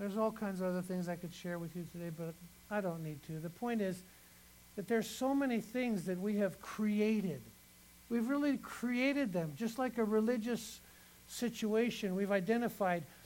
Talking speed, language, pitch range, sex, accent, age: 180 wpm, English, 180-235 Hz, male, American, 60-79